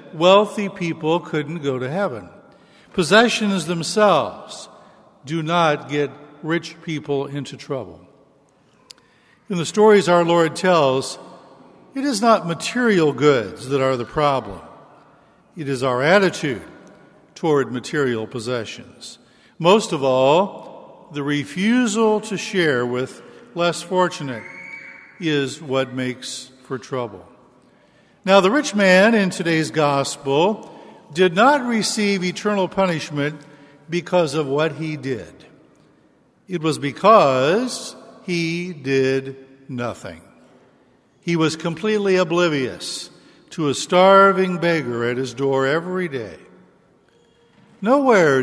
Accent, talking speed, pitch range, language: American, 110 wpm, 135-190 Hz, English